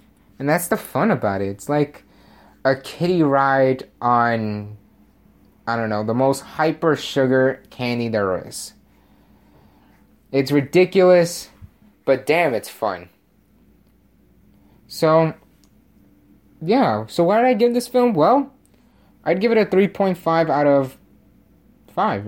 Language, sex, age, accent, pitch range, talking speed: English, male, 20-39, American, 110-160 Hz, 120 wpm